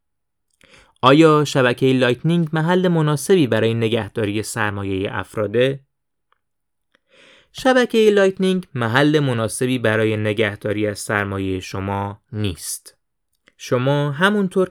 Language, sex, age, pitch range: Persian, male, 20-39, 110-165 Hz